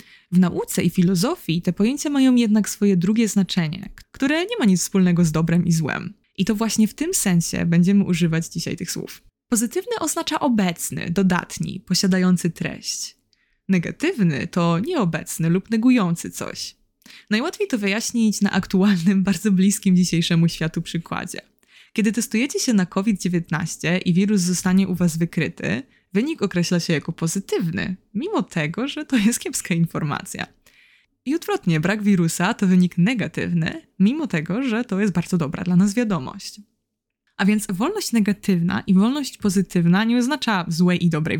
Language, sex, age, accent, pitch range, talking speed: Polish, female, 20-39, native, 175-220 Hz, 150 wpm